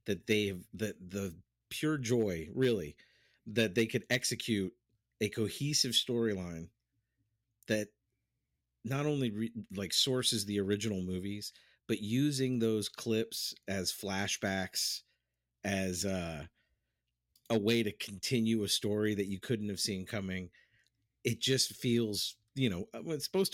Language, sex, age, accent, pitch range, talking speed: English, male, 40-59, American, 100-120 Hz, 130 wpm